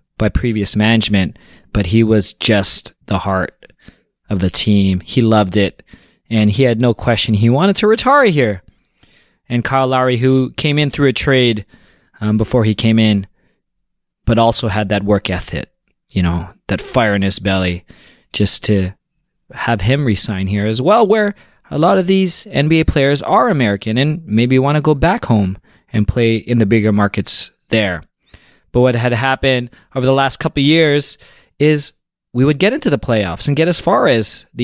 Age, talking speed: 20-39, 185 wpm